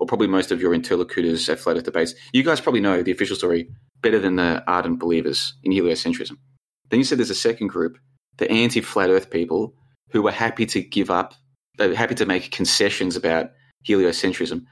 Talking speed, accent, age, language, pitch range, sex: 205 wpm, Australian, 20-39, English, 90-130 Hz, male